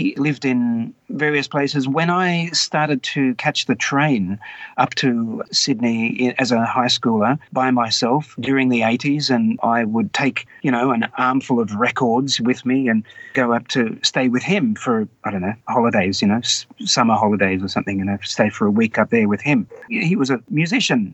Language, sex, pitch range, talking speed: English, male, 120-150 Hz, 195 wpm